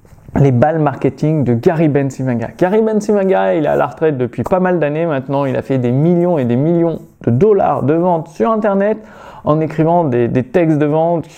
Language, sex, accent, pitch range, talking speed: French, male, French, 135-190 Hz, 205 wpm